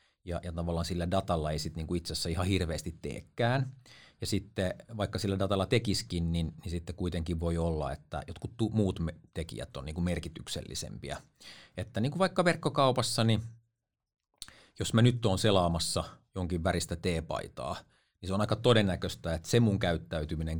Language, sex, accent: Finnish, male, native